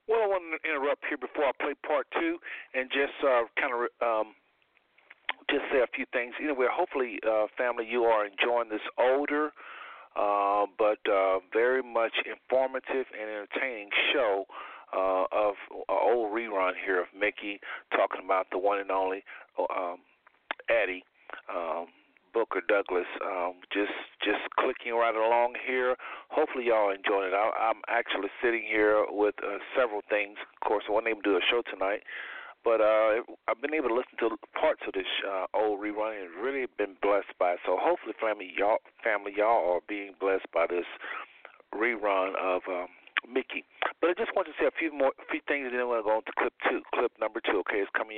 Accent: American